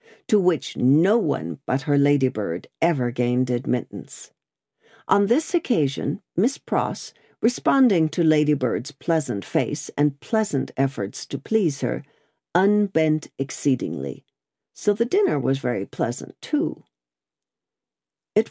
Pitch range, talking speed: 135-185 Hz, 115 wpm